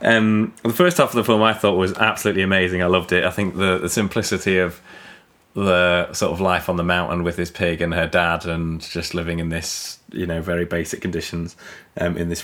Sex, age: male, 20-39